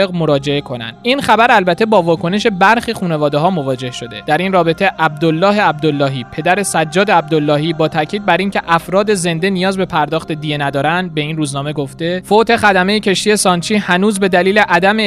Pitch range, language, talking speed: 160-200 Hz, Persian, 165 wpm